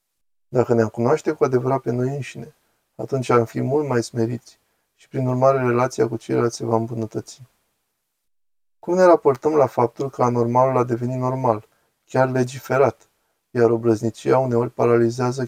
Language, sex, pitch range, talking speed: Romanian, male, 115-135 Hz, 150 wpm